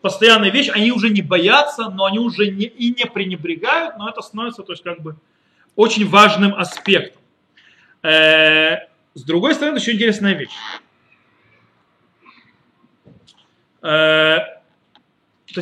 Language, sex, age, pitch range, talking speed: Russian, male, 30-49, 160-210 Hz, 115 wpm